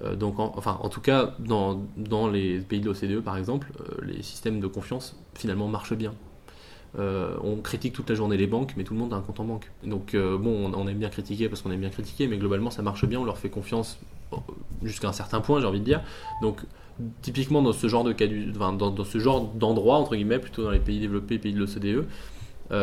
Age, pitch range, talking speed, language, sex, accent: 20-39, 100-115 Hz, 225 wpm, French, male, French